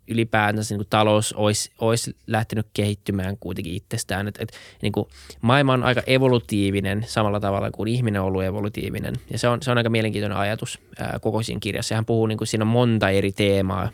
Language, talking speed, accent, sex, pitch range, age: Finnish, 200 wpm, native, male, 100-115 Hz, 20-39